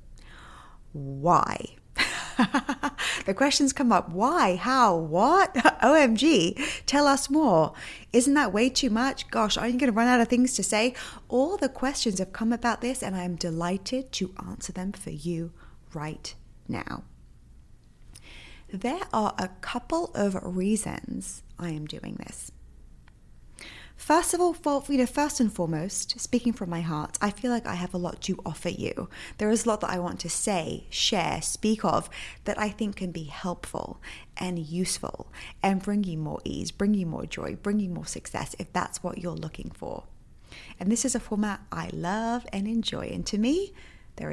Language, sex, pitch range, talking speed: English, female, 180-250 Hz, 175 wpm